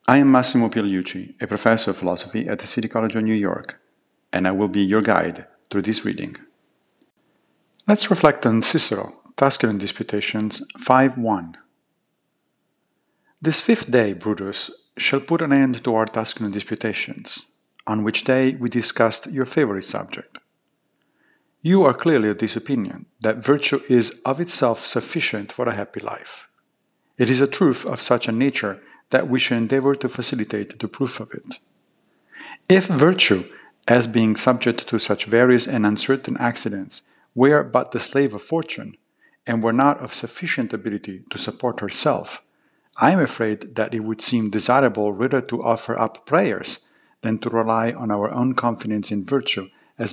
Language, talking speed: English, 160 wpm